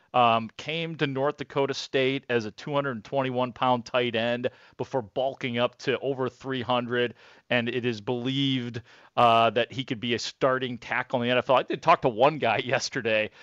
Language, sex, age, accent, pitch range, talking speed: English, male, 40-59, American, 115-135 Hz, 175 wpm